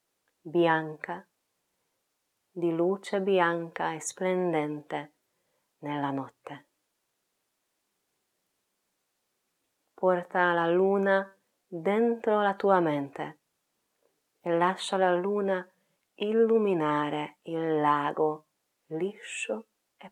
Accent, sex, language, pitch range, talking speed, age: native, female, Italian, 155-195 Hz, 70 wpm, 30-49